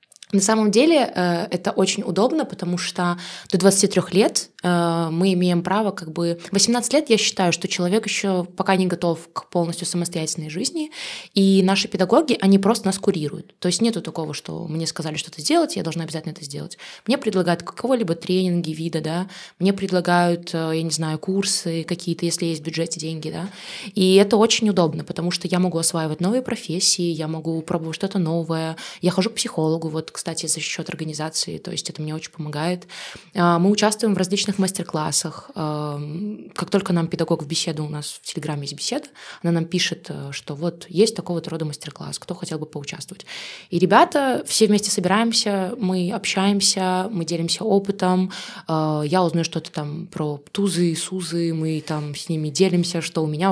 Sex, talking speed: female, 175 wpm